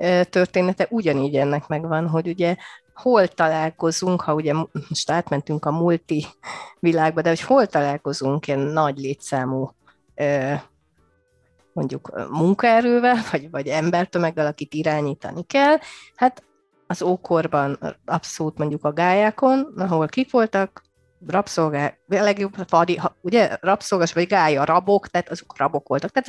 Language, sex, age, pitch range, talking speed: Hungarian, female, 30-49, 150-205 Hz, 120 wpm